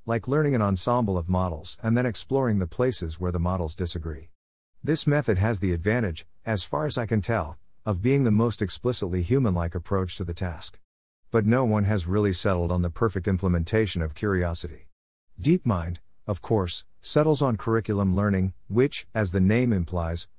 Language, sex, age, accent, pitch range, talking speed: English, male, 50-69, American, 90-115 Hz, 175 wpm